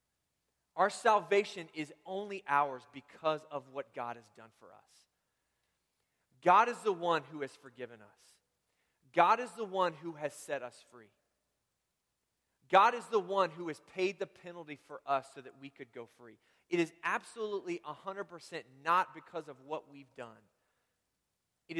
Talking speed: 160 wpm